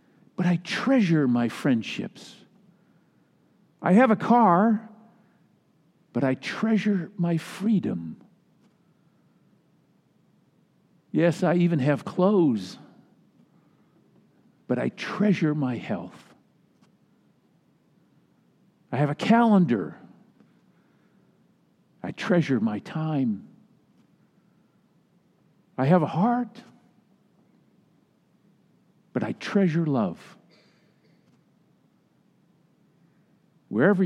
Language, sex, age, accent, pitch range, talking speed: English, male, 50-69, American, 165-210 Hz, 70 wpm